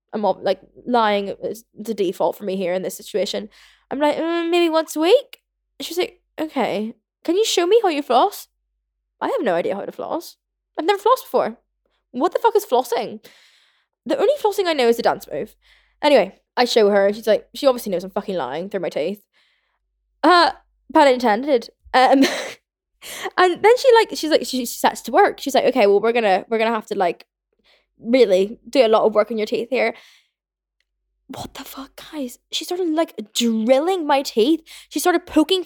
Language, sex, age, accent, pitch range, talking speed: English, female, 10-29, British, 215-320 Hz, 200 wpm